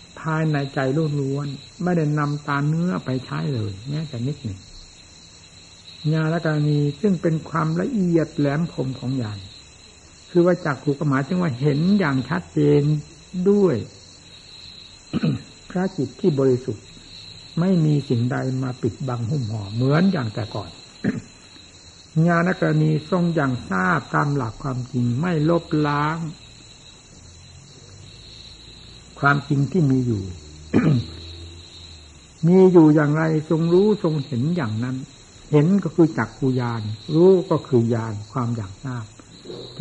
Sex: male